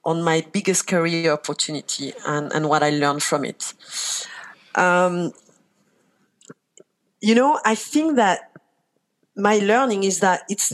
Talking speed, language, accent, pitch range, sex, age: 130 wpm, English, French, 160-220 Hz, female, 40-59